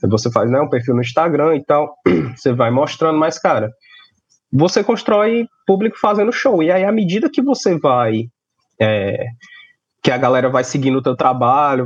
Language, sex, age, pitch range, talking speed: Hungarian, male, 20-39, 130-185 Hz, 175 wpm